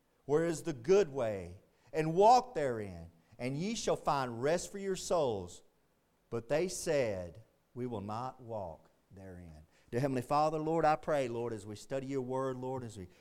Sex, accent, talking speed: male, American, 175 wpm